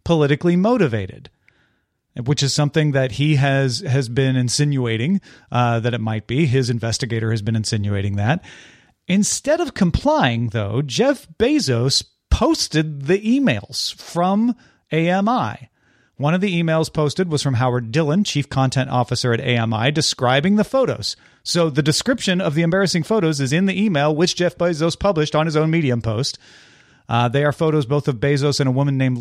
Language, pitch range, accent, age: English, 125-170 Hz, American, 30-49